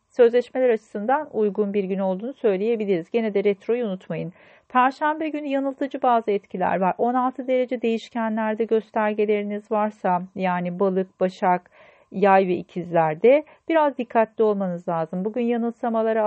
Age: 40-59